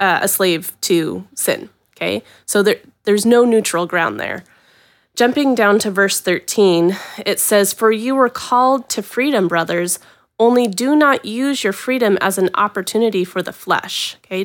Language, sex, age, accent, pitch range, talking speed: English, female, 30-49, American, 185-225 Hz, 165 wpm